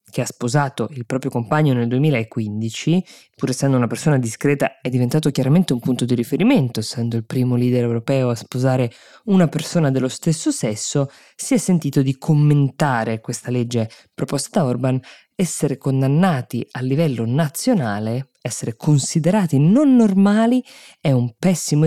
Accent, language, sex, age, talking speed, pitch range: native, Italian, female, 20-39, 150 wpm, 120-160 Hz